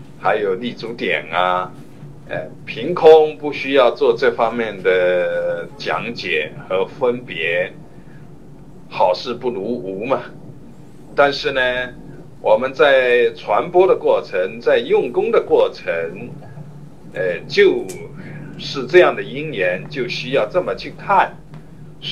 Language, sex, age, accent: Chinese, male, 50-69, native